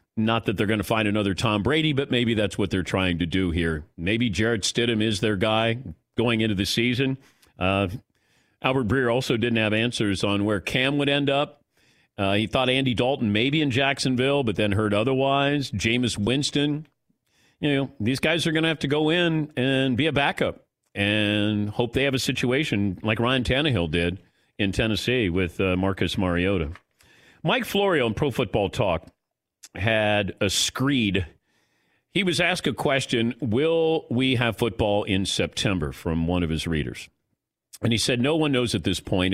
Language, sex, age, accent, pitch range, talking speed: English, male, 40-59, American, 100-130 Hz, 185 wpm